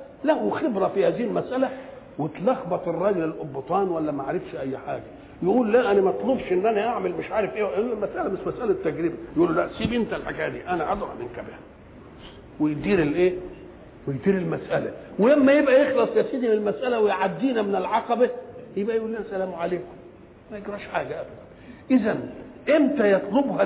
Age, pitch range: 50-69, 190-265 Hz